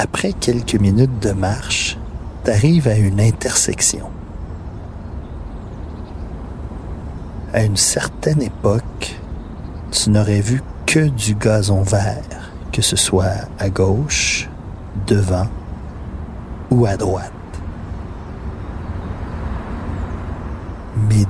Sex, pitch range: male, 80-110 Hz